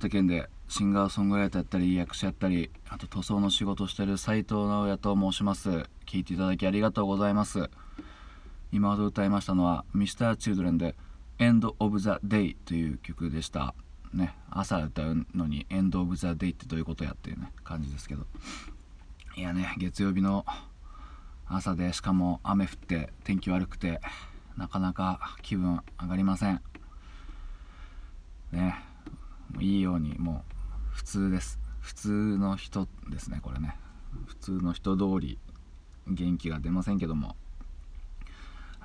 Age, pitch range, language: 20-39, 75-95 Hz, Japanese